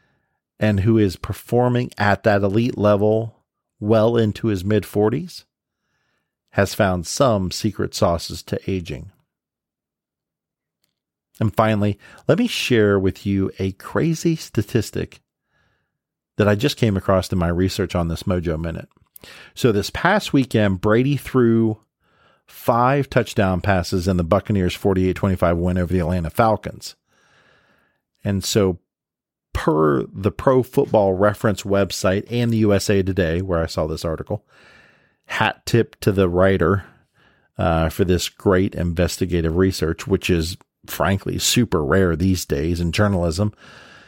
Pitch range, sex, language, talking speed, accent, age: 90-110 Hz, male, English, 135 wpm, American, 40-59